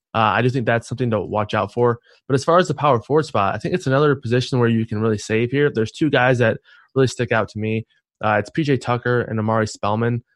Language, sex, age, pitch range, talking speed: English, male, 20-39, 110-130 Hz, 260 wpm